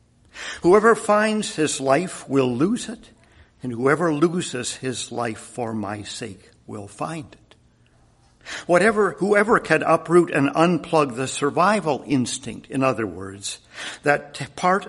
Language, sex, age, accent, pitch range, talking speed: English, male, 50-69, American, 120-160 Hz, 130 wpm